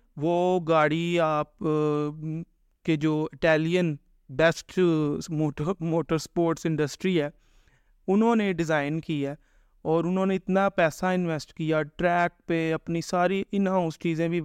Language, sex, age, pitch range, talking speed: Urdu, male, 30-49, 155-190 Hz, 125 wpm